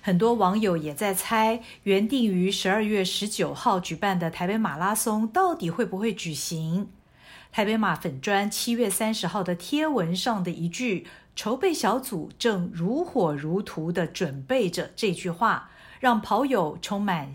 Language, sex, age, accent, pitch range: Chinese, female, 50-69, native, 180-240 Hz